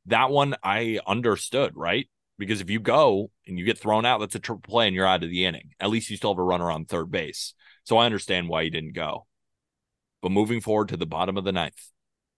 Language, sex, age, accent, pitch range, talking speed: English, male, 30-49, American, 95-120 Hz, 240 wpm